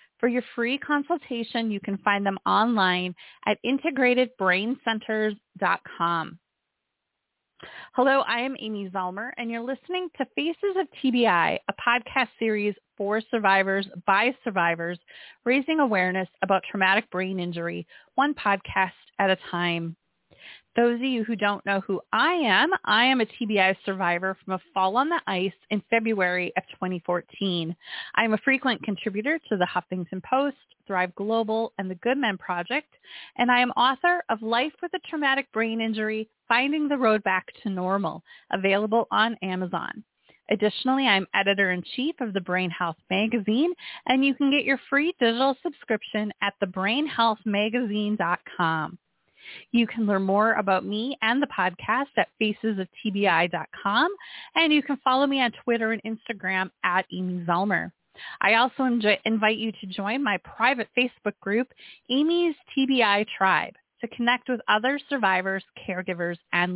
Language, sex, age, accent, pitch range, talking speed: English, female, 30-49, American, 190-255 Hz, 145 wpm